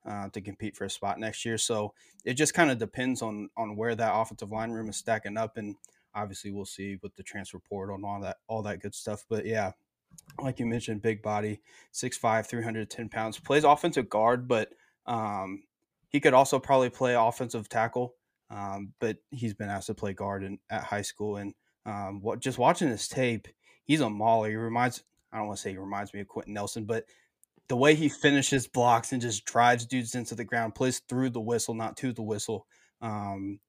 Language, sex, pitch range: English, male, 105-120 Hz